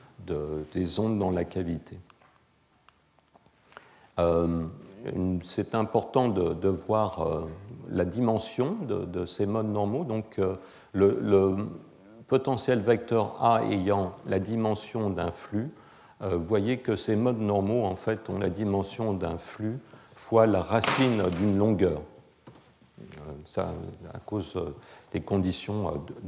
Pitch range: 90-115 Hz